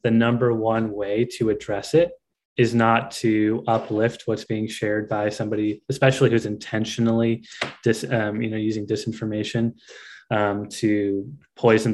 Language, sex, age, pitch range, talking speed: English, male, 20-39, 110-125 Hz, 135 wpm